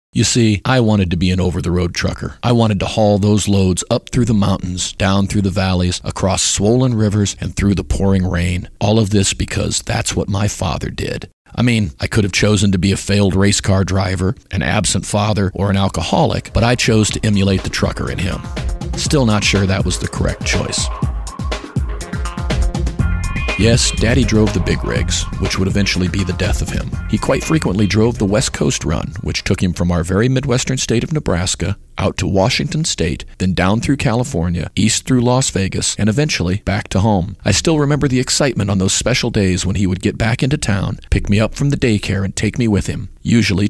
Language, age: English, 40-59